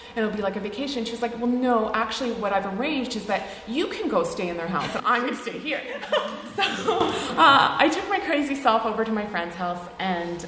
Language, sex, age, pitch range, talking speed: English, female, 30-49, 170-215 Hz, 245 wpm